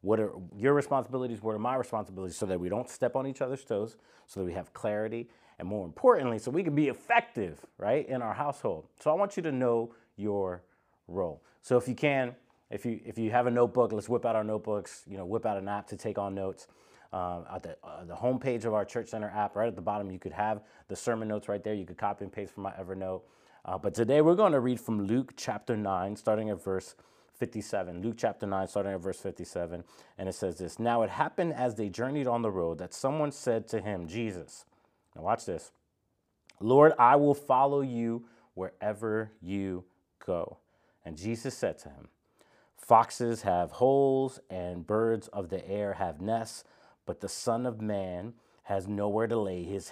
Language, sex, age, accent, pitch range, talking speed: English, male, 30-49, American, 100-125 Hz, 210 wpm